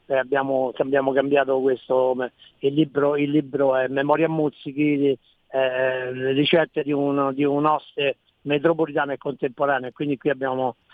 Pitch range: 135-155 Hz